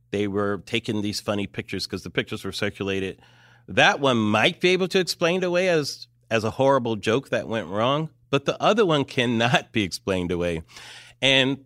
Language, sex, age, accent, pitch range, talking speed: English, male, 40-59, American, 105-145 Hz, 185 wpm